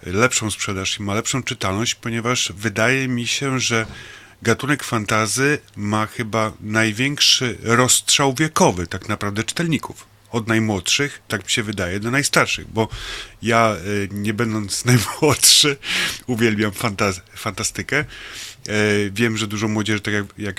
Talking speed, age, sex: 130 wpm, 30-49, male